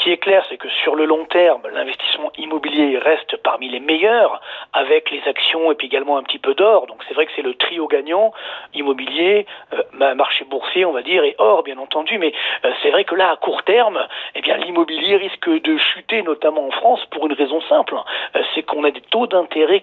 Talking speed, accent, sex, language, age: 225 wpm, French, male, French, 40-59